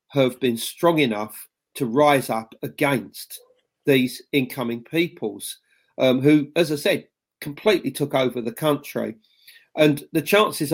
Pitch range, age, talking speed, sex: 125-155 Hz, 40-59, 135 wpm, male